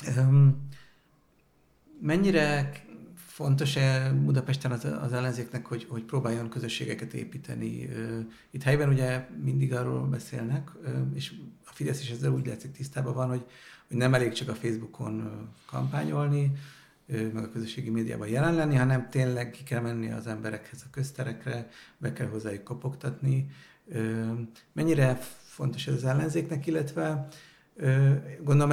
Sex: male